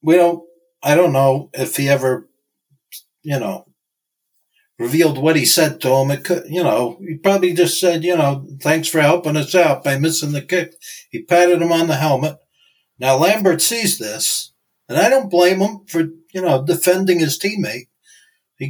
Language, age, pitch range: English, 60-79, 145-175 Hz